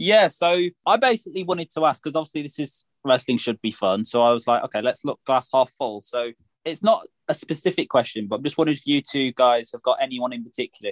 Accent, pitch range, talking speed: British, 120-155 Hz, 240 wpm